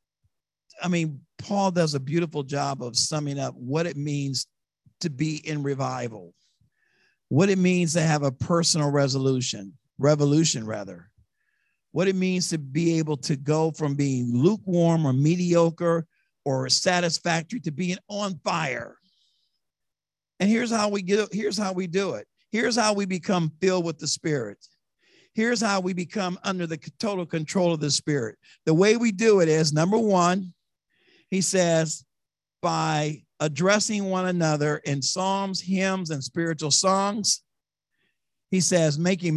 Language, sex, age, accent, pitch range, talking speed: English, male, 50-69, American, 155-195 Hz, 150 wpm